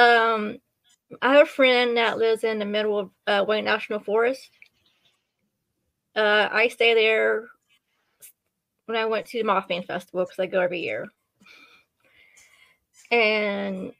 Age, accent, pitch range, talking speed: 20-39, American, 195-240 Hz, 135 wpm